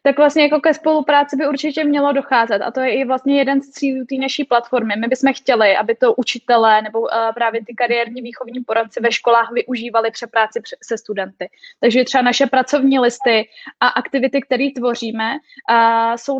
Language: Czech